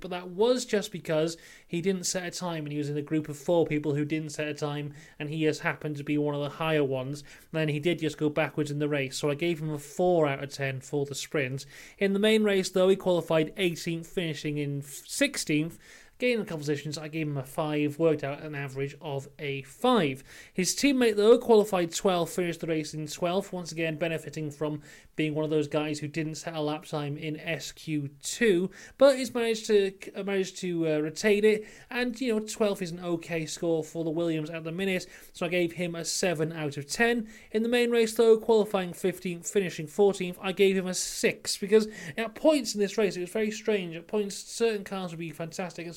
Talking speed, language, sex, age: 230 wpm, English, male, 30-49